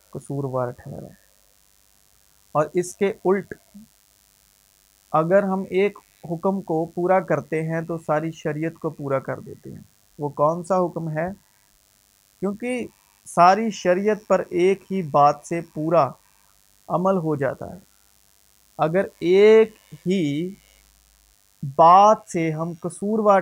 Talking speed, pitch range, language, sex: 125 wpm, 155-195 Hz, Urdu, male